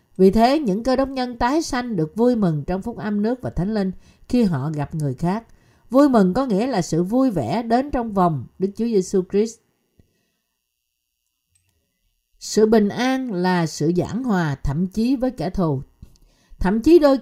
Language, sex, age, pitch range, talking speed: Vietnamese, female, 50-69, 170-240 Hz, 185 wpm